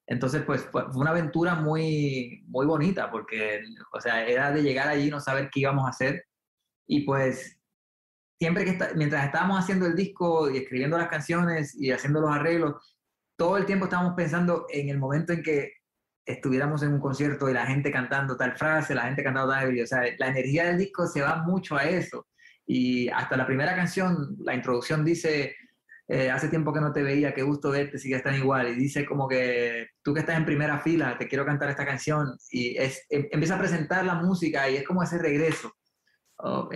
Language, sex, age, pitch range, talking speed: Spanish, male, 20-39, 130-165 Hz, 205 wpm